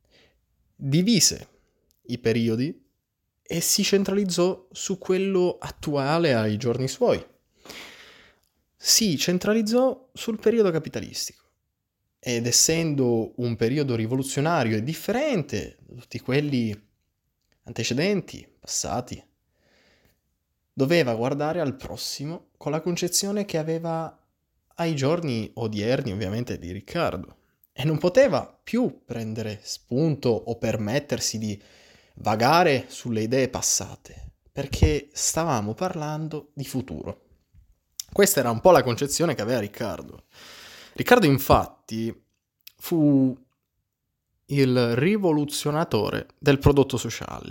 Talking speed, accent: 100 wpm, native